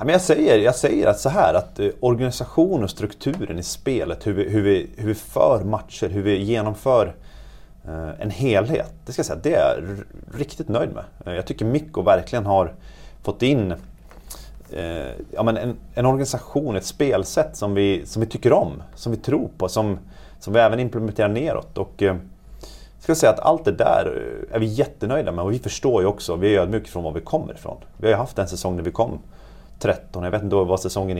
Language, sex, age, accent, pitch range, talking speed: Swedish, male, 30-49, native, 95-115 Hz, 205 wpm